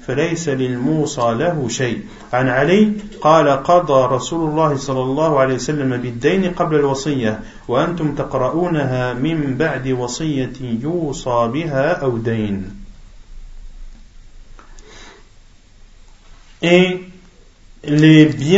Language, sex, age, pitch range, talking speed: French, male, 50-69, 120-175 Hz, 40 wpm